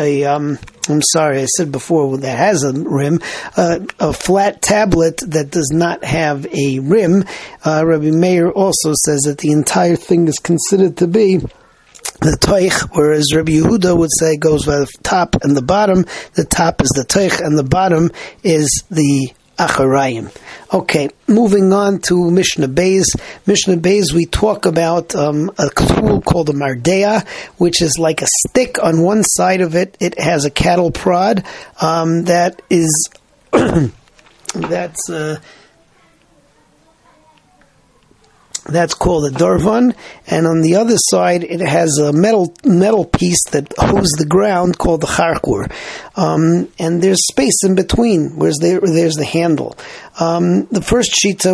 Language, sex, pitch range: English, male, 155-185 Hz